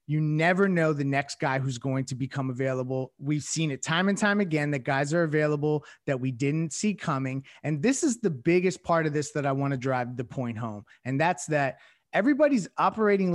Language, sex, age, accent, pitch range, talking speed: English, male, 30-49, American, 140-175 Hz, 215 wpm